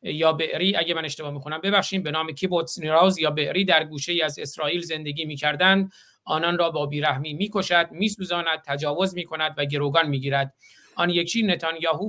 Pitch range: 155-185 Hz